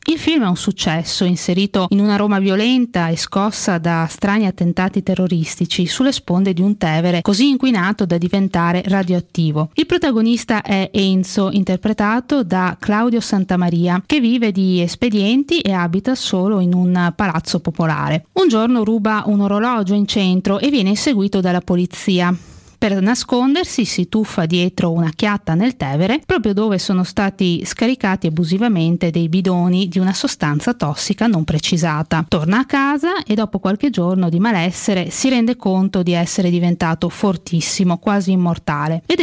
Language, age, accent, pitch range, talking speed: Italian, 20-39, native, 175-220 Hz, 150 wpm